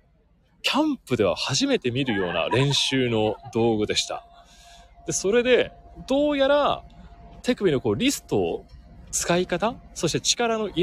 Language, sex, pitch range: Japanese, male, 140-215 Hz